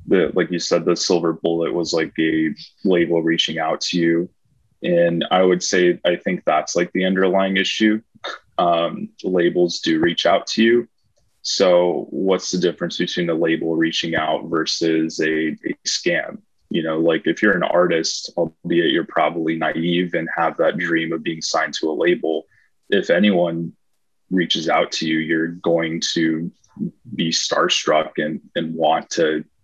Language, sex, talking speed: English, male, 165 wpm